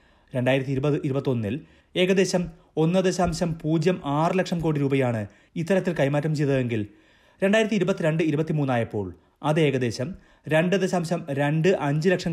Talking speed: 85 wpm